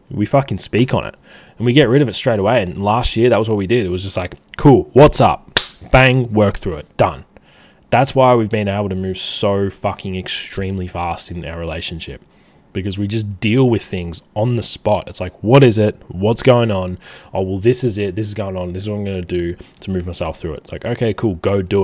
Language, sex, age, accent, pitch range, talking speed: English, male, 20-39, Australian, 90-120 Hz, 250 wpm